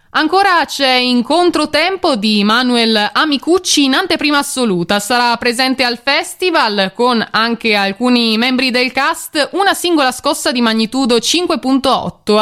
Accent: native